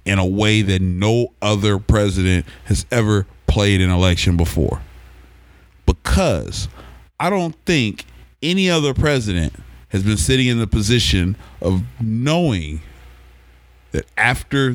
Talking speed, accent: 120 wpm, American